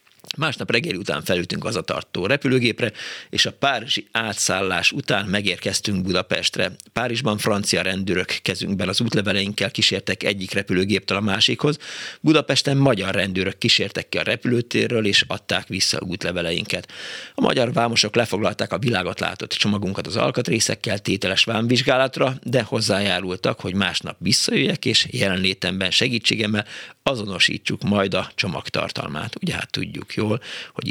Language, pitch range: Hungarian, 95-120 Hz